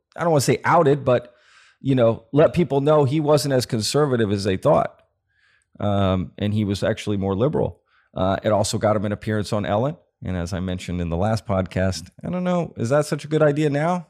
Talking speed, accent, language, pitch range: 225 wpm, American, English, 95-120 Hz